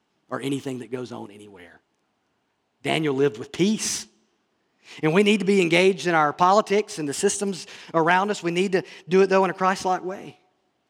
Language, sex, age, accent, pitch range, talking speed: English, male, 40-59, American, 140-185 Hz, 185 wpm